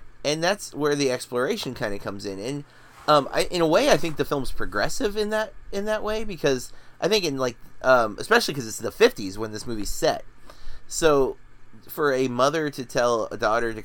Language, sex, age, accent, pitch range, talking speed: English, male, 30-49, American, 110-145 Hz, 210 wpm